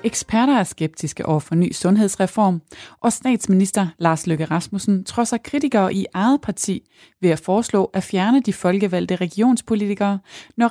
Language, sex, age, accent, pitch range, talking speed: Danish, female, 20-39, native, 170-215 Hz, 145 wpm